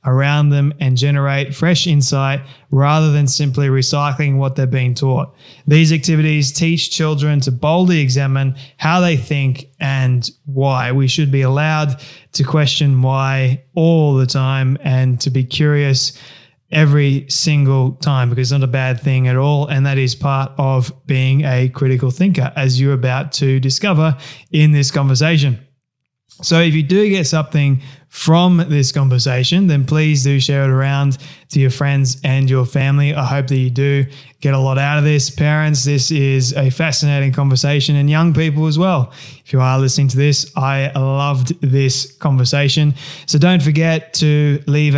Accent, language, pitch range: Australian, English, 135-150 Hz